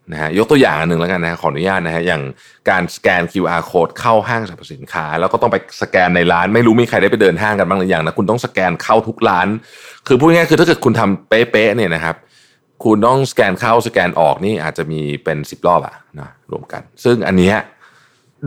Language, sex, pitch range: Thai, male, 80-120 Hz